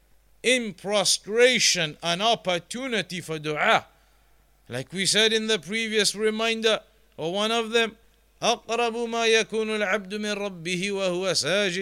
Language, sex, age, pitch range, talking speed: English, male, 50-69, 185-215 Hz, 85 wpm